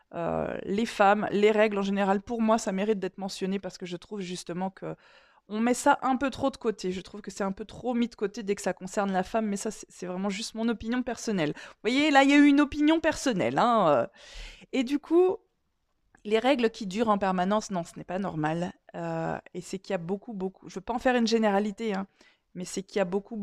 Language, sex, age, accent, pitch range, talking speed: French, female, 20-39, French, 185-230 Hz, 255 wpm